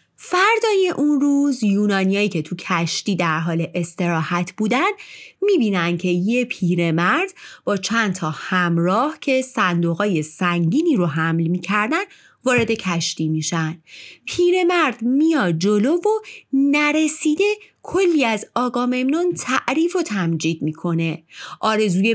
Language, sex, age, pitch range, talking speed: Persian, female, 30-49, 180-300 Hz, 110 wpm